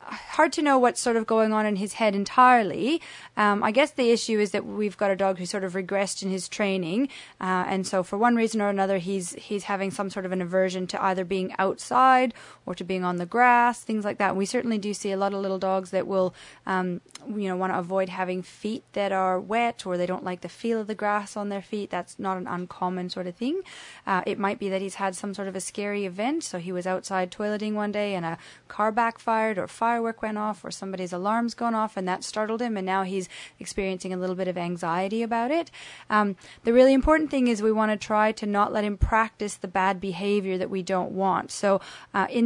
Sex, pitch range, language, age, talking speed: female, 190-225 Hz, English, 30-49, 245 wpm